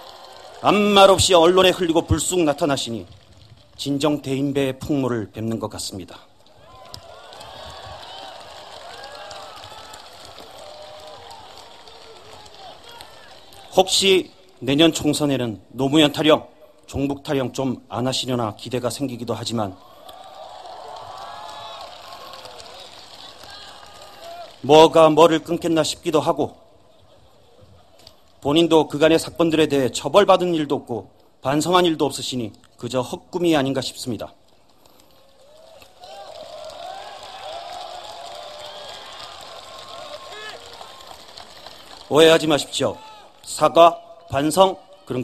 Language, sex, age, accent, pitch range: Korean, male, 40-59, native, 125-170 Hz